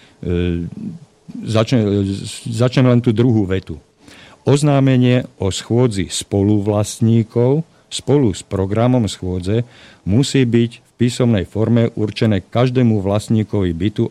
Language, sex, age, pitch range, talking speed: Slovak, male, 50-69, 100-130 Hz, 100 wpm